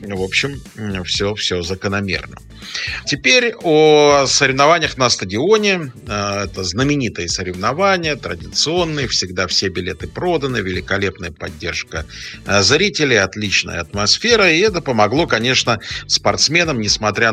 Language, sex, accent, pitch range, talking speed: Russian, male, native, 95-130 Hz, 100 wpm